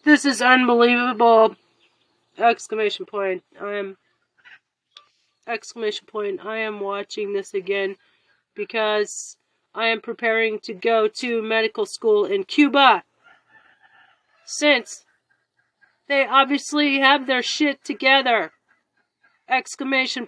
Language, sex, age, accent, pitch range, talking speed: English, female, 40-59, American, 240-295 Hz, 100 wpm